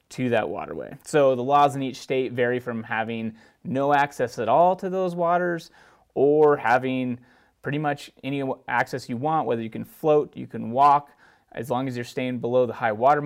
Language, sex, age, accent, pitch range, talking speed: English, male, 30-49, American, 115-145 Hz, 195 wpm